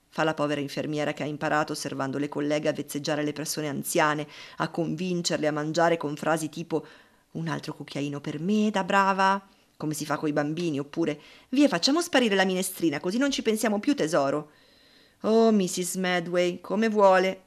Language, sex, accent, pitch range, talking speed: Italian, female, native, 150-215 Hz, 175 wpm